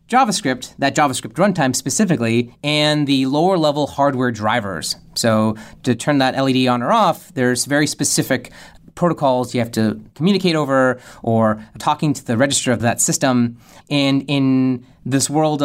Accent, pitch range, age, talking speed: American, 120-150 Hz, 30-49, 150 wpm